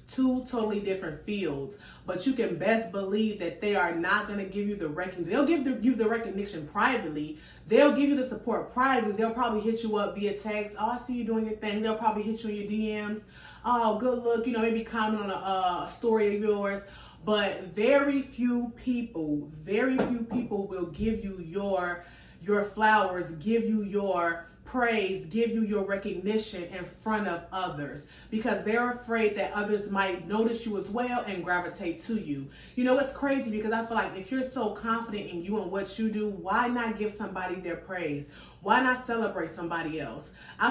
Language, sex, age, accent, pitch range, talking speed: English, female, 30-49, American, 195-235 Hz, 200 wpm